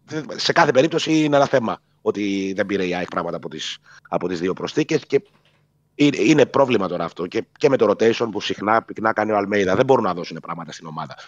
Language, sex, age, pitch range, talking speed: Greek, male, 30-49, 100-150 Hz, 205 wpm